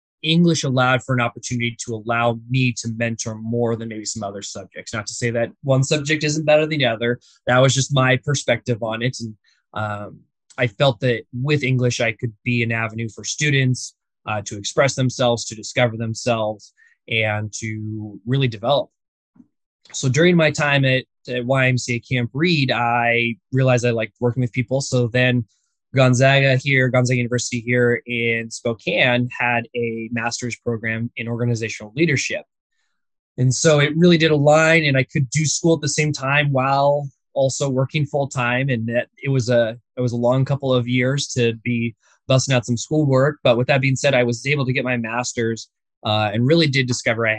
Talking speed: 185 wpm